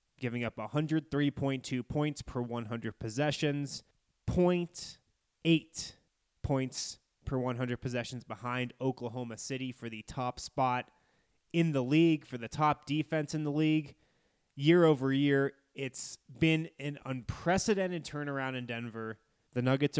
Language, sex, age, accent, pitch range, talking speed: English, male, 20-39, American, 125-155 Hz, 125 wpm